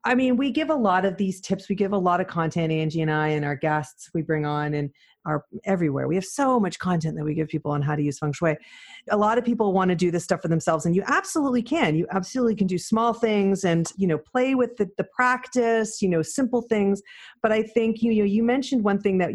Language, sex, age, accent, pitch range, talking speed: English, female, 40-59, American, 160-220 Hz, 265 wpm